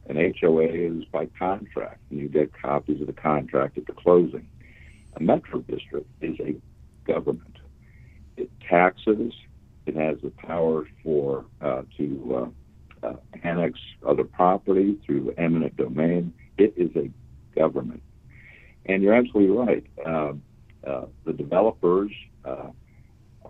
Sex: male